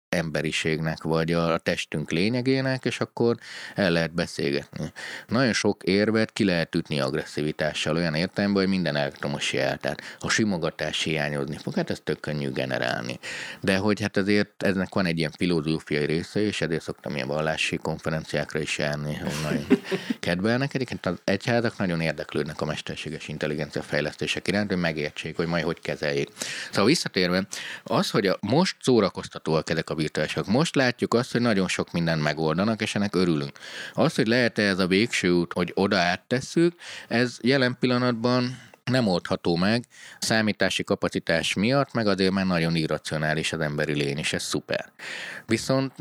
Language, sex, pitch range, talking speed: Hungarian, male, 80-105 Hz, 160 wpm